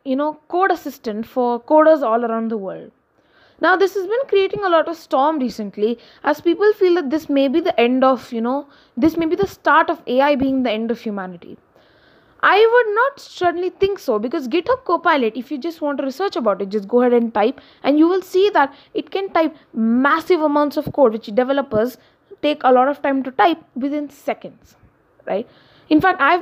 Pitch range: 245-340 Hz